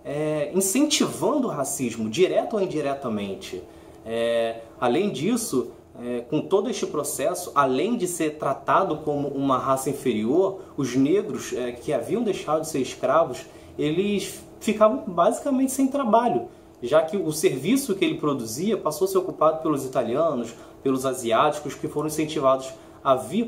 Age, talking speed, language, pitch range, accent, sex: 20-39, 145 wpm, Portuguese, 135-195 Hz, Brazilian, male